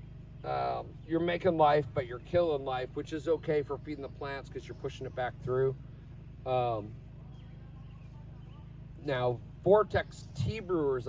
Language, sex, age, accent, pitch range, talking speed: English, male, 40-59, American, 130-145 Hz, 140 wpm